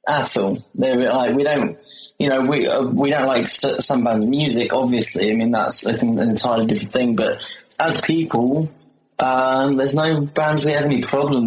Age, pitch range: 20-39, 115-150 Hz